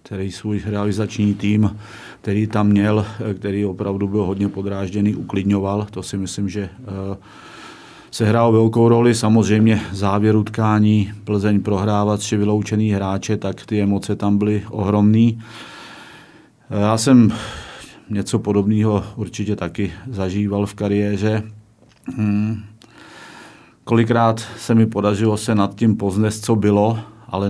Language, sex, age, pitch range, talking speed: Czech, male, 40-59, 100-105 Hz, 120 wpm